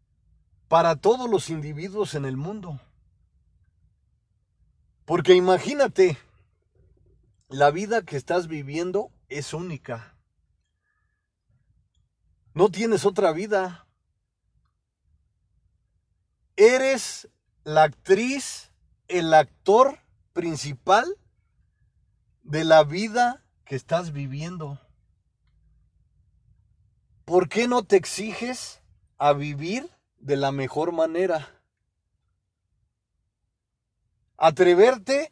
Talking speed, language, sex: 75 wpm, Spanish, male